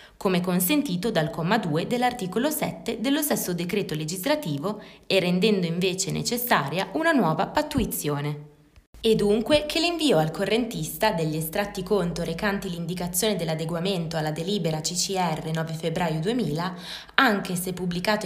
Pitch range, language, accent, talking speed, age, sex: 170-230 Hz, Italian, native, 130 wpm, 20-39, female